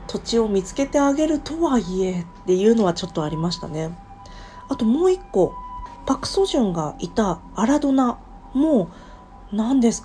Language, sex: Japanese, female